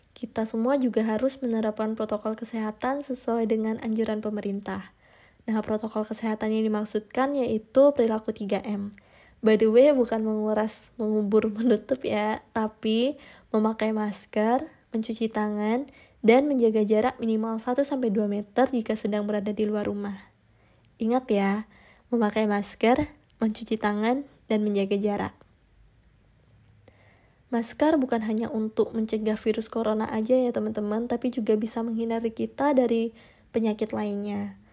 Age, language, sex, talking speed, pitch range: 20-39, Indonesian, female, 125 wpm, 210-235 Hz